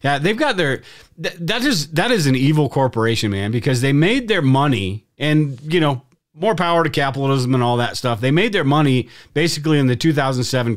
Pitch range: 110-140 Hz